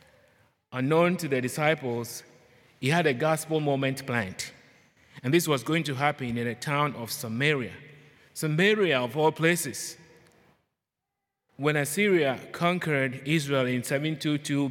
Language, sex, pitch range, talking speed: English, male, 125-150 Hz, 125 wpm